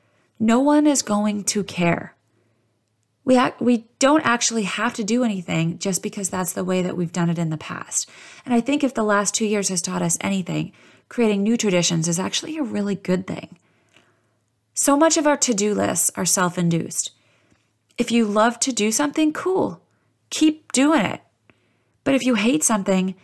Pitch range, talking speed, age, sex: 165-235 Hz, 185 wpm, 30-49, female